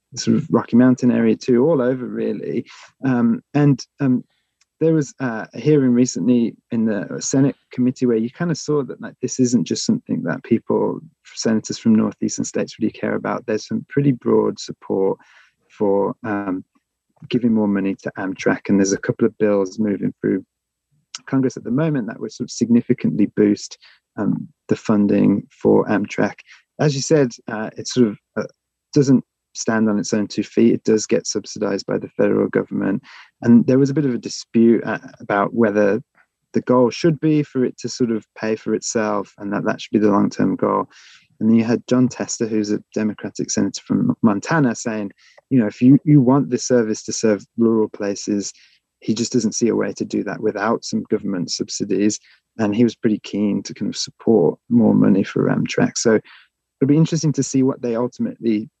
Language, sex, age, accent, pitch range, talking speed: English, male, 30-49, British, 110-130 Hz, 190 wpm